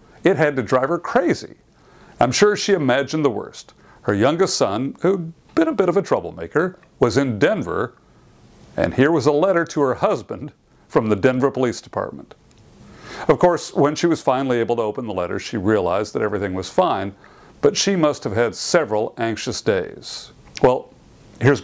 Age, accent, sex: 50-69, American, male